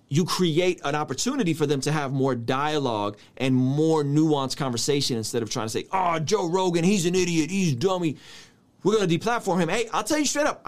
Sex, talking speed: male, 220 wpm